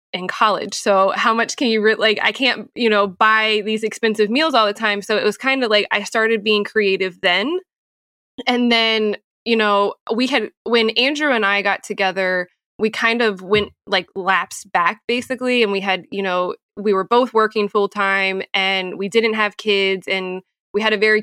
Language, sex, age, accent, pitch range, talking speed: English, female, 20-39, American, 195-220 Hz, 200 wpm